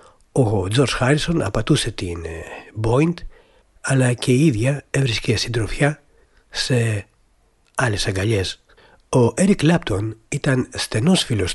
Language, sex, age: Greek, male, 60-79